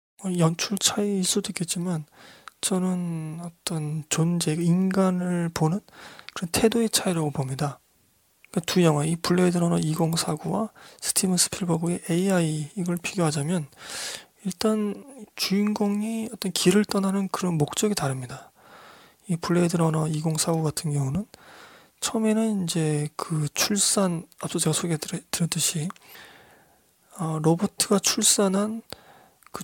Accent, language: native, Korean